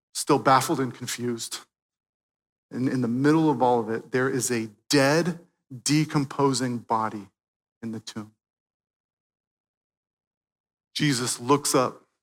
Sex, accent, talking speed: male, American, 120 wpm